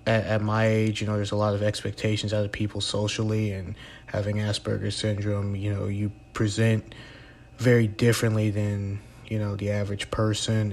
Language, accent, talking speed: English, American, 170 wpm